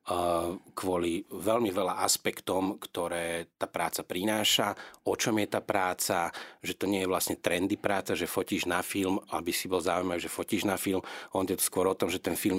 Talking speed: 195 wpm